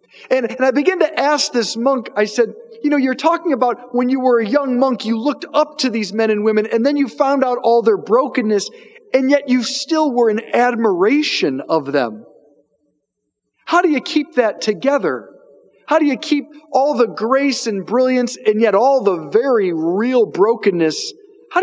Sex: male